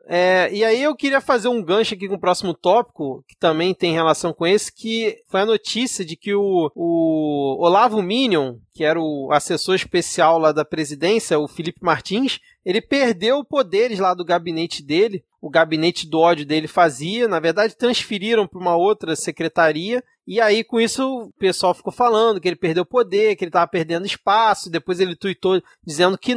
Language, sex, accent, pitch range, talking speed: Portuguese, male, Brazilian, 170-230 Hz, 185 wpm